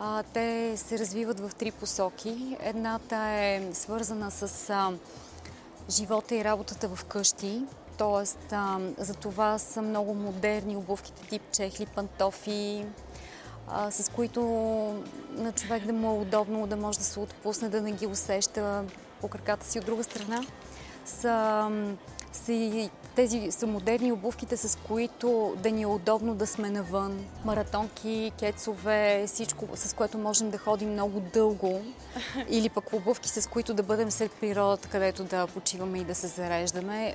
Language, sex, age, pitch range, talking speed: Bulgarian, female, 20-39, 200-225 Hz, 150 wpm